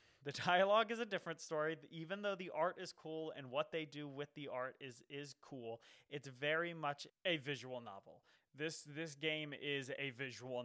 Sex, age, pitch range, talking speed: male, 20-39, 120-150 Hz, 190 wpm